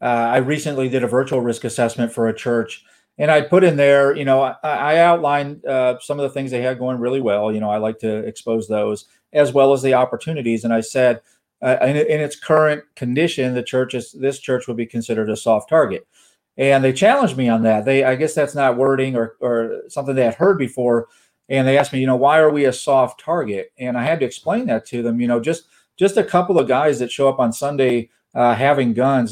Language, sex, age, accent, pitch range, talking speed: English, male, 40-59, American, 115-140 Hz, 240 wpm